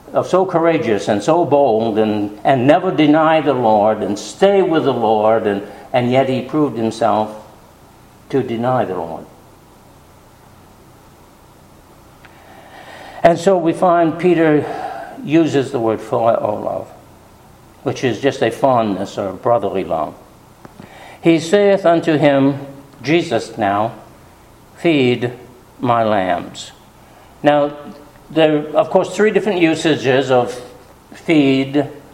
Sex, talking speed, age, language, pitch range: male, 120 wpm, 60-79, English, 120-155 Hz